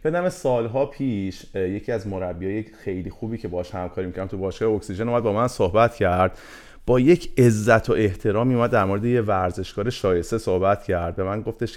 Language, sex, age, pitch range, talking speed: Persian, male, 30-49, 100-125 Hz, 190 wpm